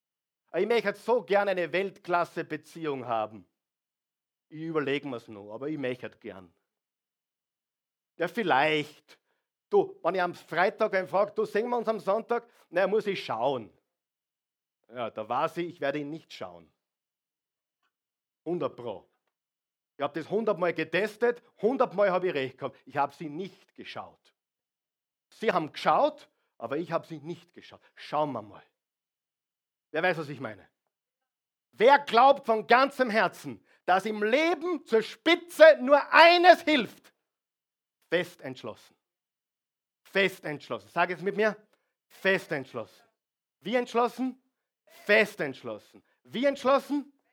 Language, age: German, 50-69